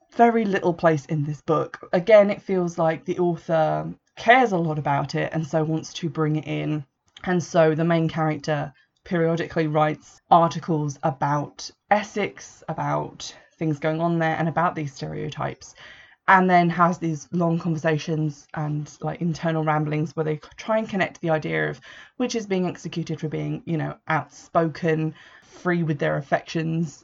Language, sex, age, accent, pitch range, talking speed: English, female, 20-39, British, 155-175 Hz, 165 wpm